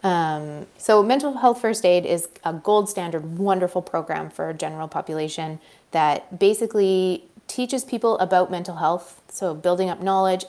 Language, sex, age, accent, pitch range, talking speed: English, female, 30-49, American, 160-205 Hz, 155 wpm